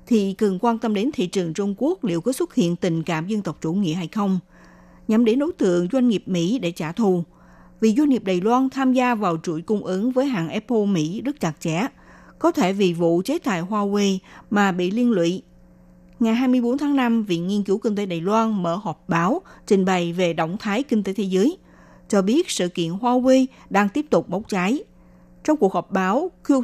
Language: Vietnamese